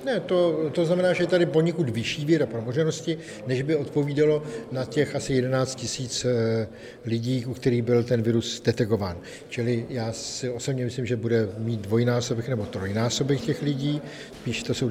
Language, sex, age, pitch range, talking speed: Czech, male, 50-69, 115-135 Hz, 170 wpm